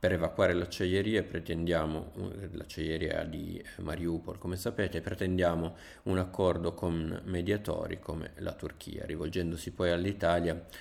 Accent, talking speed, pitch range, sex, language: native, 115 wpm, 80-90 Hz, male, Italian